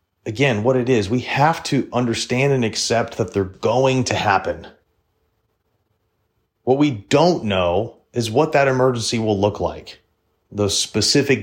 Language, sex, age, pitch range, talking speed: English, male, 30-49, 90-120 Hz, 145 wpm